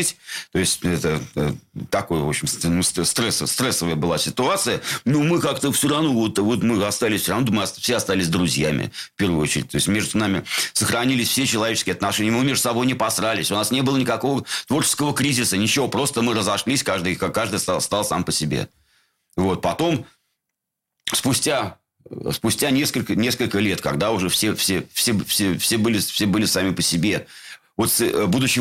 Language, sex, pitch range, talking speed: Russian, male, 85-115 Hz, 175 wpm